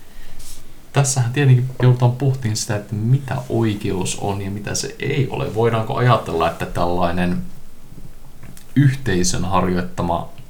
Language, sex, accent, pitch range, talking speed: Finnish, male, native, 95-130 Hz, 115 wpm